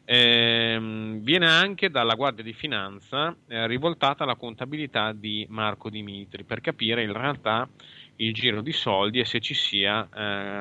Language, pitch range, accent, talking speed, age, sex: Italian, 100-115 Hz, native, 155 wpm, 30-49, male